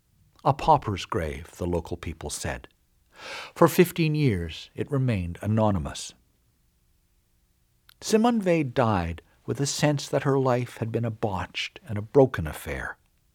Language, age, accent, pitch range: English, 60-79, American, 95-140 Hz